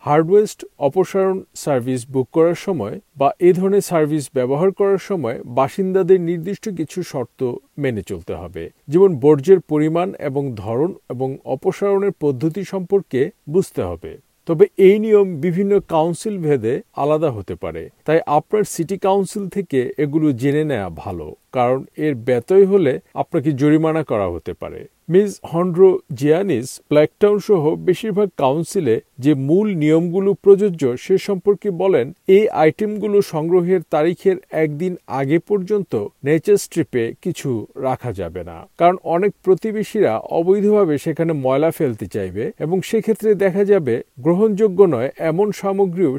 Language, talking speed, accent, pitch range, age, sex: Bengali, 130 wpm, native, 145-195 Hz, 50-69, male